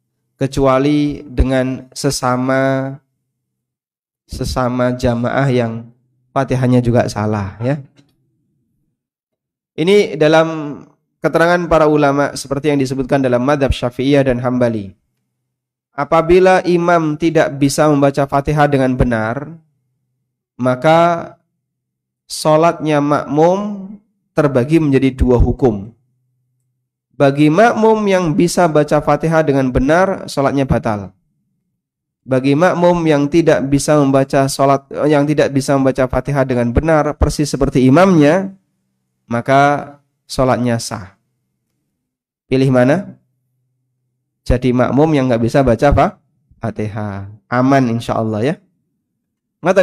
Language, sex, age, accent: Indonesian, male, 20-39, native